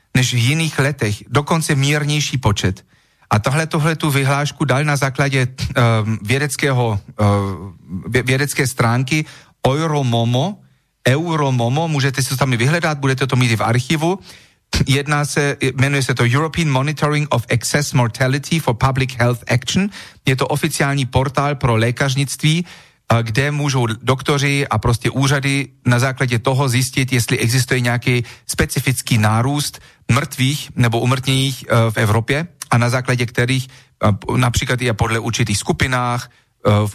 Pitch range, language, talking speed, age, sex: 120-145 Hz, Slovak, 135 wpm, 40-59, male